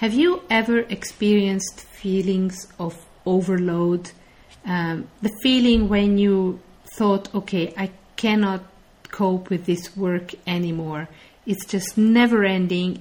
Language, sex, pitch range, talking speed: English, female, 175-205 Hz, 115 wpm